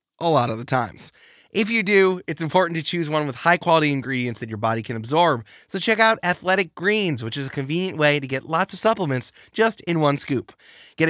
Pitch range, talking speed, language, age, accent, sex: 125-165 Hz, 225 wpm, English, 20-39, American, male